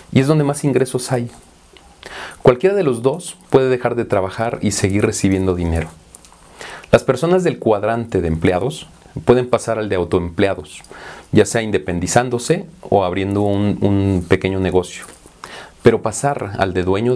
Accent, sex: Mexican, male